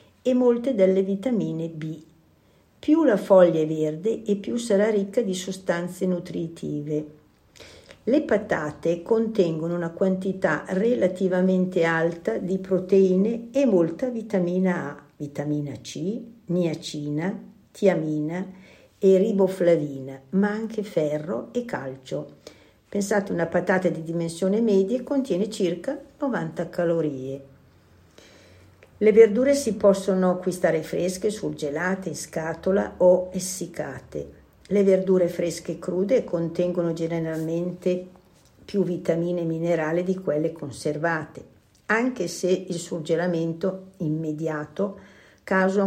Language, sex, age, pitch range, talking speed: Italian, female, 50-69, 155-195 Hz, 105 wpm